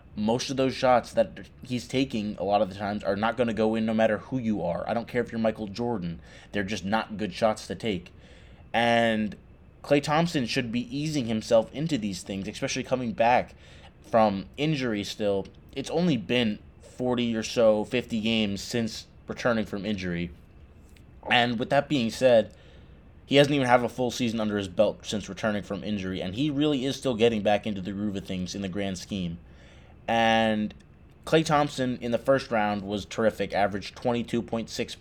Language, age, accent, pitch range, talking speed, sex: English, 20-39, American, 95-125 Hz, 190 wpm, male